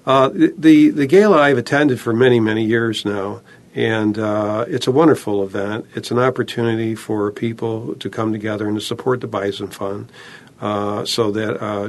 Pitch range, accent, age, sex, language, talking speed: 105-125 Hz, American, 50-69, male, English, 185 wpm